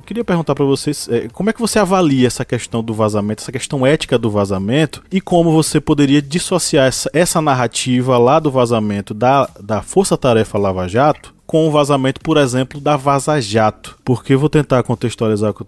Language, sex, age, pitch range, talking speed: Portuguese, male, 20-39, 115-155 Hz, 195 wpm